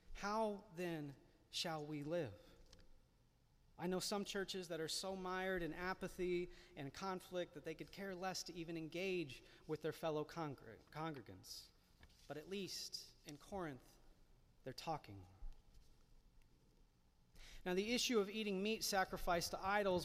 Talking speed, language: 135 wpm, English